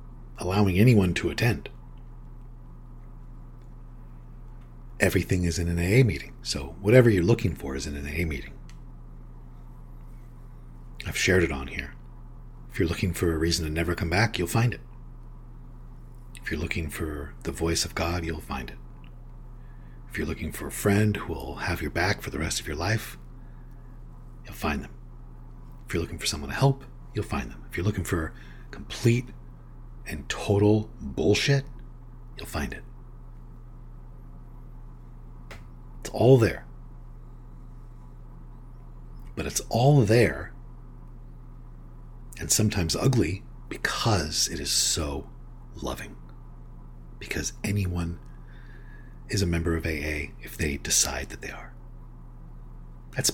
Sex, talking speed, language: male, 135 wpm, English